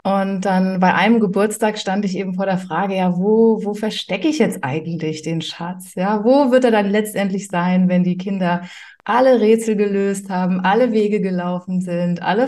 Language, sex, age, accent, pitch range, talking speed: German, female, 30-49, German, 185-225 Hz, 190 wpm